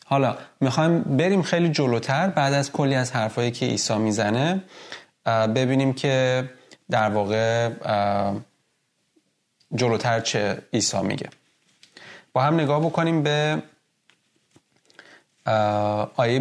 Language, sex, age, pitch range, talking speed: Persian, male, 30-49, 115-150 Hz, 100 wpm